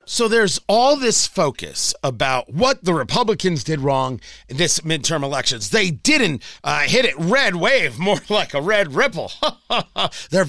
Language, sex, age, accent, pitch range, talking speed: English, male, 40-59, American, 140-205 Hz, 160 wpm